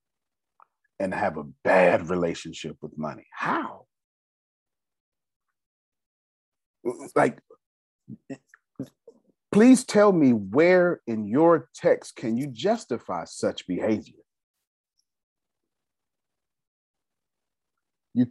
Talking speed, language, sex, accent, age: 70 wpm, English, male, American, 40-59